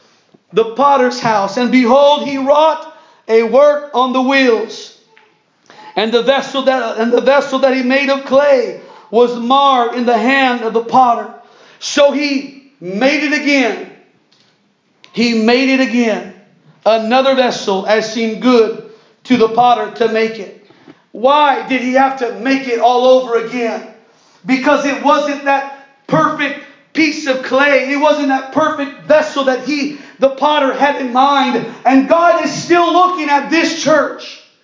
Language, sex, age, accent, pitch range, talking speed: English, male, 40-59, American, 225-295 Hz, 155 wpm